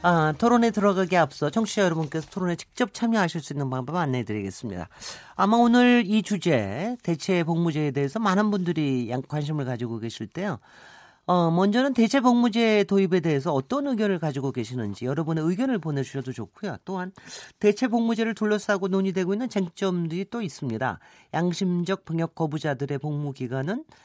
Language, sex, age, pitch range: Korean, male, 40-59, 140-210 Hz